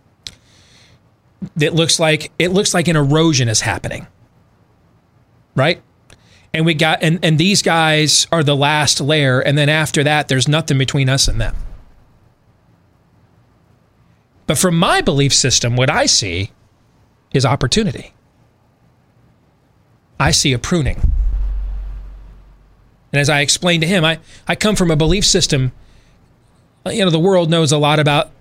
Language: English